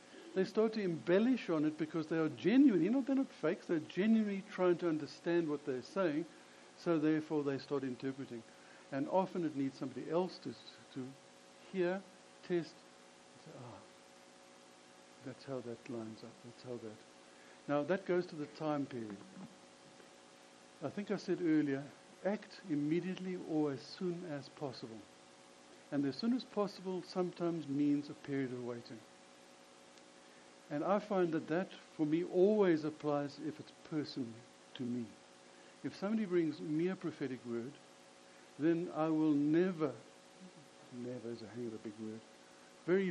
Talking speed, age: 155 wpm, 60-79